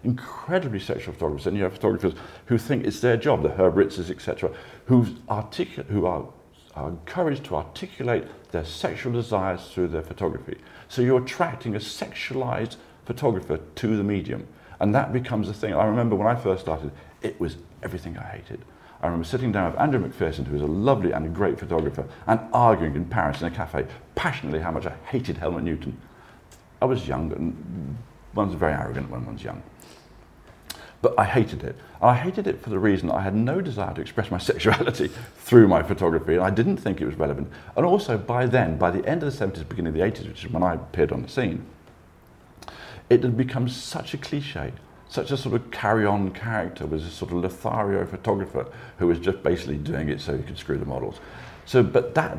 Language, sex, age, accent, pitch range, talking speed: English, male, 50-69, British, 85-125 Hz, 200 wpm